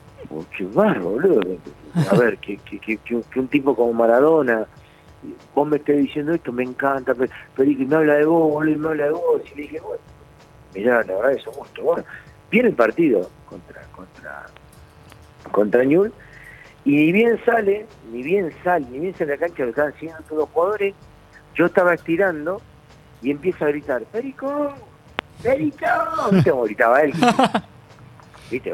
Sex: male